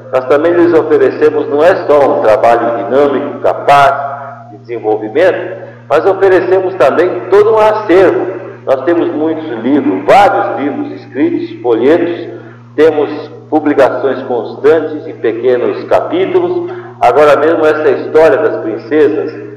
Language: Portuguese